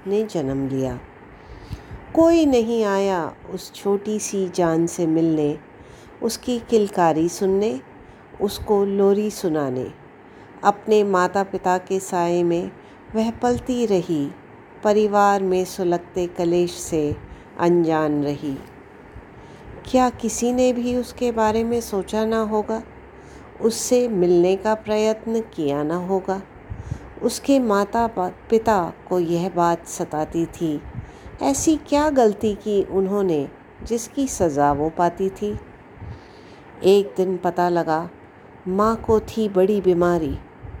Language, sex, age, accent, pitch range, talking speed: English, female, 50-69, Indian, 170-220 Hz, 110 wpm